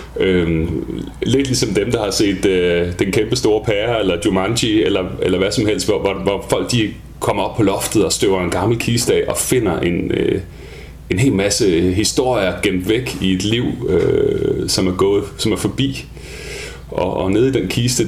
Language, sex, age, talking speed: English, male, 30-49, 195 wpm